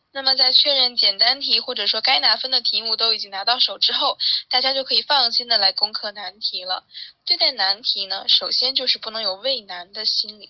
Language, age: Chinese, 10-29